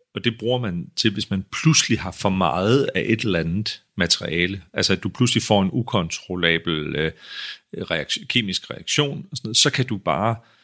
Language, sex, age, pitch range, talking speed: Danish, male, 40-59, 90-115 Hz, 190 wpm